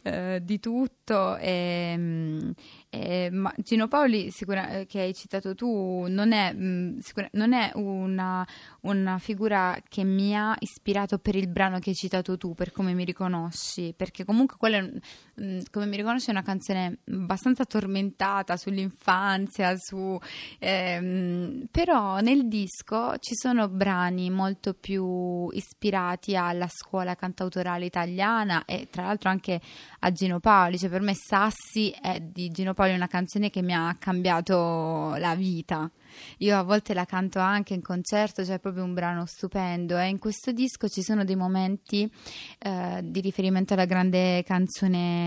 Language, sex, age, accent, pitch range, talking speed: Italian, female, 20-39, native, 180-205 Hz, 150 wpm